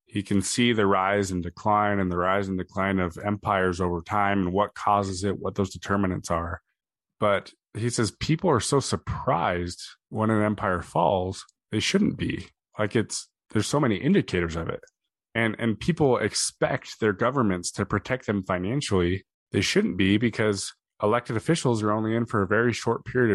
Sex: male